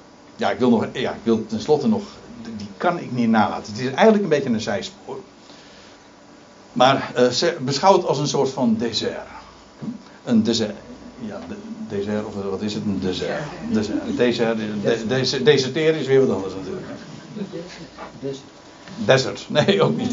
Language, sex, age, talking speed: Dutch, male, 60-79, 190 wpm